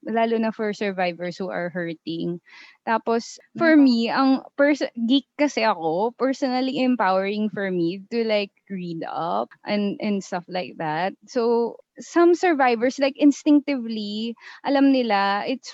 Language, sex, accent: English, female, Filipino